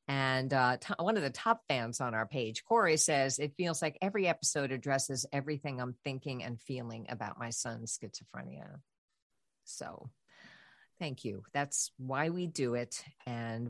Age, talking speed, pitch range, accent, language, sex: 50-69, 160 wpm, 130-170 Hz, American, English, female